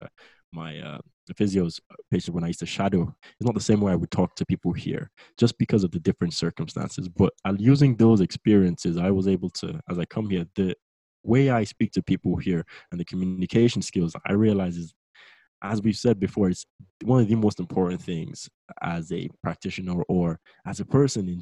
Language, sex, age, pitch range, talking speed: English, male, 20-39, 90-105 Hz, 200 wpm